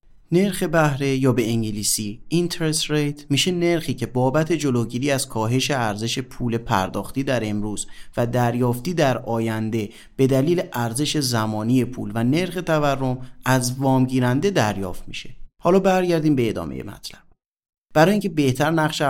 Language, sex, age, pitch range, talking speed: Persian, male, 30-49, 115-160 Hz, 140 wpm